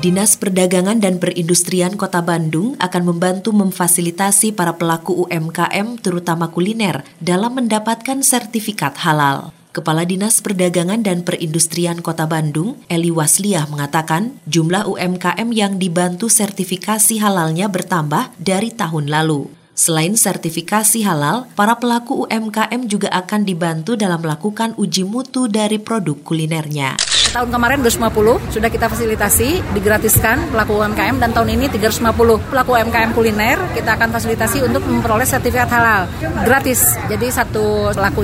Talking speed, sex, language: 125 wpm, female, Indonesian